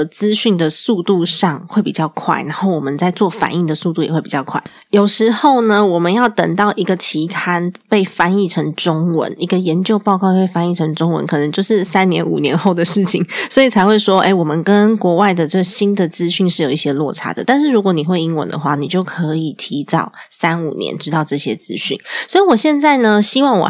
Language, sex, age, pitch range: Chinese, female, 20-39, 160-210 Hz